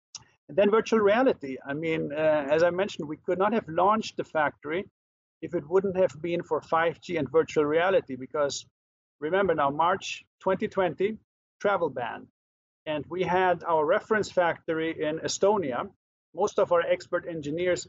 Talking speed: 155 wpm